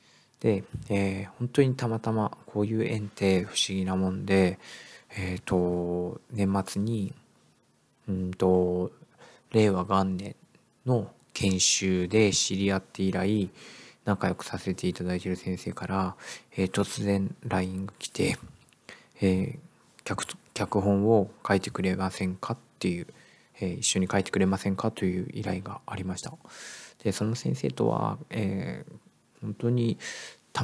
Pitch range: 95-105 Hz